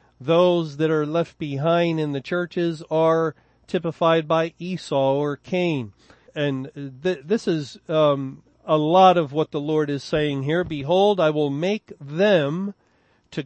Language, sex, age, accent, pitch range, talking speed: English, male, 40-59, American, 140-170 Hz, 145 wpm